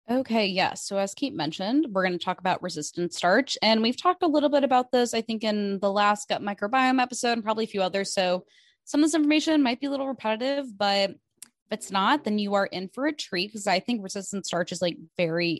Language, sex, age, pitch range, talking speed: English, female, 20-39, 180-225 Hz, 245 wpm